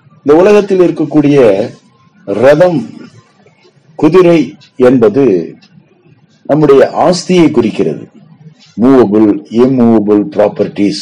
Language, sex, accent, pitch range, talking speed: Tamil, male, native, 105-150 Hz, 65 wpm